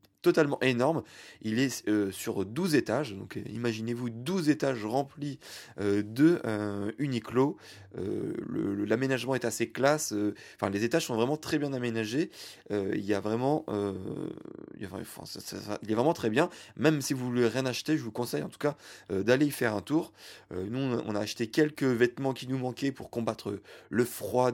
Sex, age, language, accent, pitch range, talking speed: male, 20-39, French, French, 110-140 Hz, 200 wpm